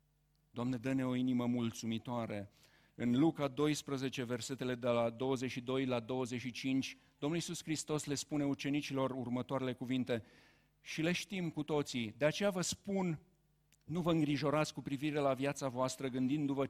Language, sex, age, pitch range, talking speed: Romanian, male, 50-69, 130-155 Hz, 145 wpm